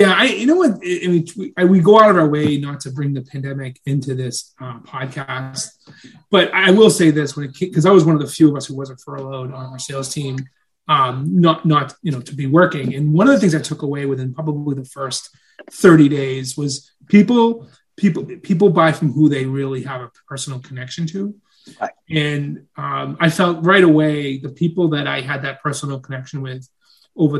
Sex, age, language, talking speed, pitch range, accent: male, 30-49, English, 210 wpm, 135-170 Hz, American